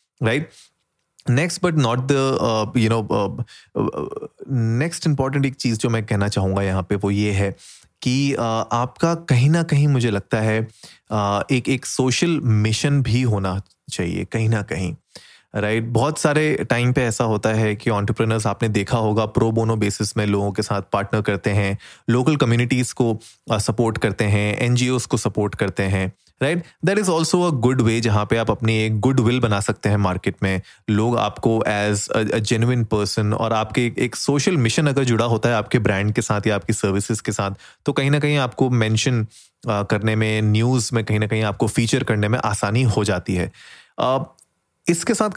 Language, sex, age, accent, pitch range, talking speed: Hindi, male, 20-39, native, 105-130 Hz, 190 wpm